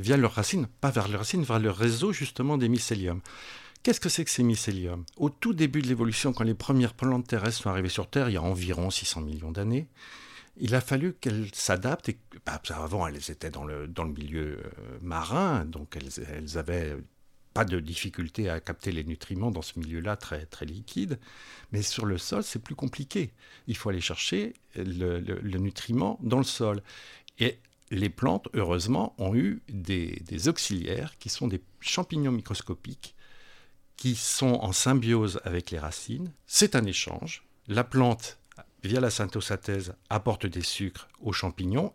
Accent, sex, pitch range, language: French, male, 90-125 Hz, French